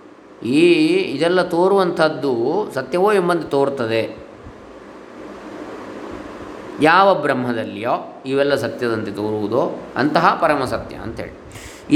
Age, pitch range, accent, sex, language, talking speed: 20-39, 135-185 Hz, native, male, Kannada, 75 wpm